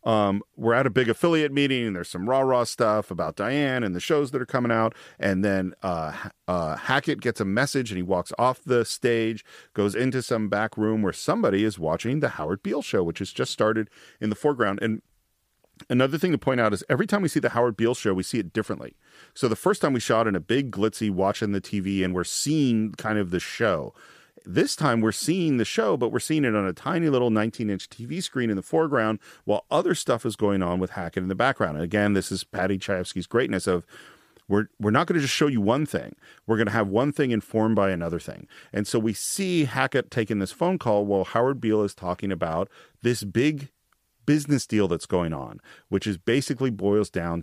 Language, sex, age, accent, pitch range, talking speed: English, male, 40-59, American, 95-130 Hz, 230 wpm